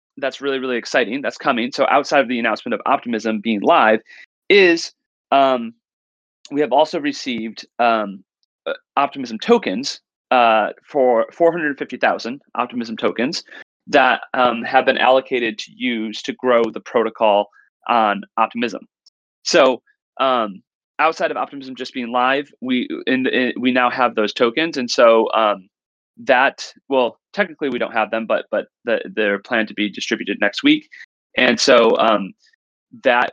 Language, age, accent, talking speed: English, 30-49, American, 150 wpm